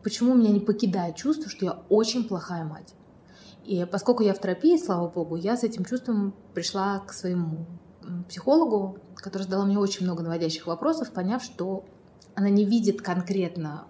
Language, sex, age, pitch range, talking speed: Russian, female, 20-39, 175-210 Hz, 170 wpm